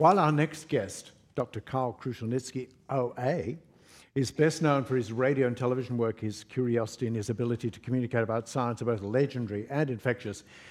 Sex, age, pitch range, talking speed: male, 60-79, 120-145 Hz, 175 wpm